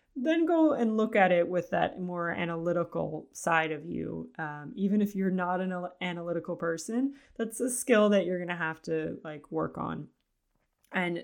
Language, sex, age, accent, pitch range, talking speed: English, female, 20-39, American, 165-215 Hz, 180 wpm